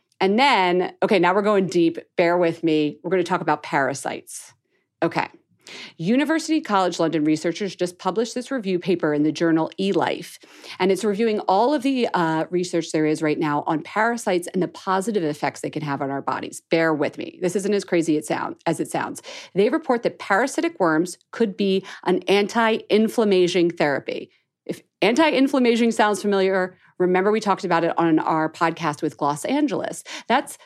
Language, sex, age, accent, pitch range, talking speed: English, female, 40-59, American, 170-245 Hz, 175 wpm